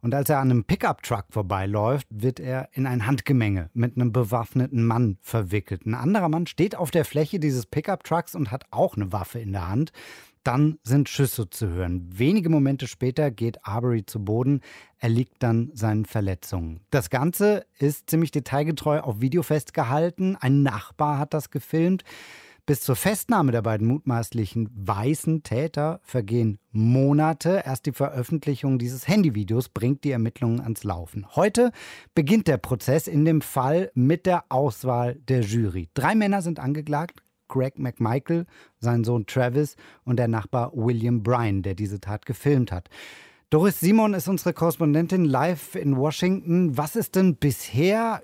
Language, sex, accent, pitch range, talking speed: German, male, German, 115-160 Hz, 160 wpm